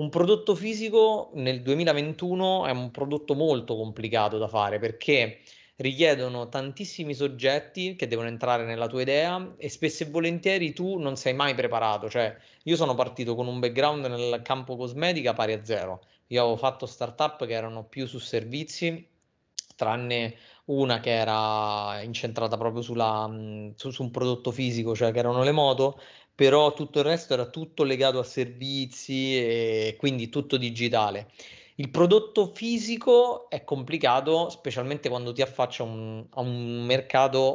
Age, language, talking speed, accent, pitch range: 30-49, Italian, 155 wpm, native, 120-145 Hz